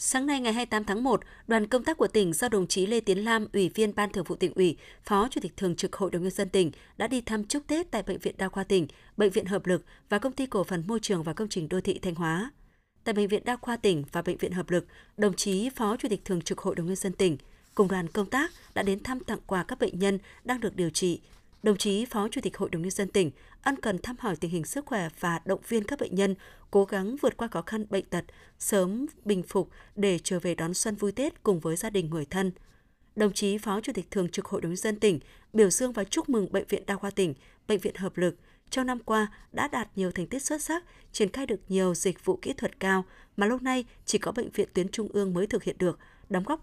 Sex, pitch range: female, 185-225 Hz